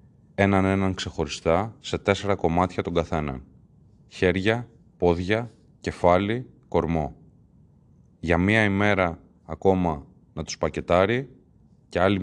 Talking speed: 100 wpm